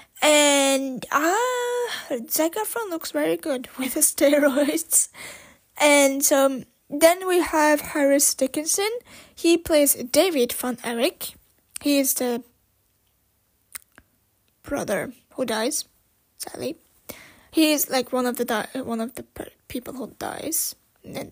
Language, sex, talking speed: English, female, 125 wpm